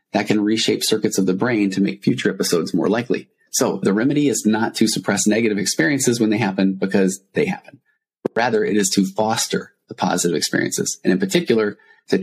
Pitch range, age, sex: 95-115 Hz, 30-49, male